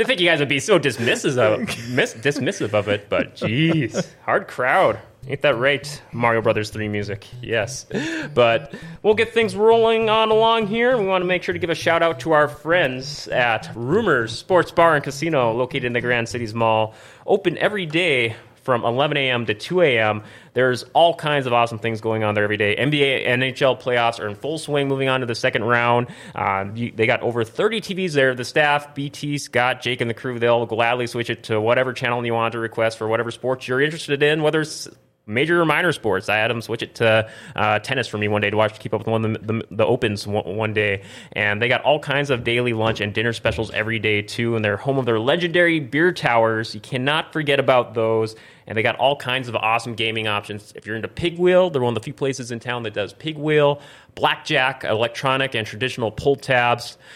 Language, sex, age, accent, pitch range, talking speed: English, male, 30-49, American, 115-150 Hz, 225 wpm